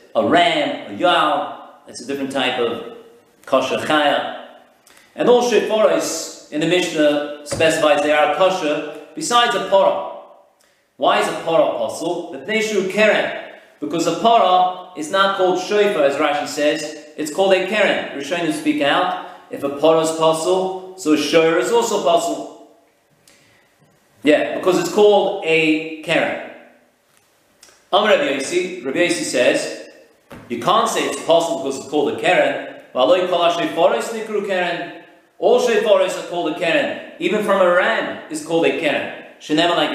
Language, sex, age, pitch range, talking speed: English, male, 40-59, 150-195 Hz, 155 wpm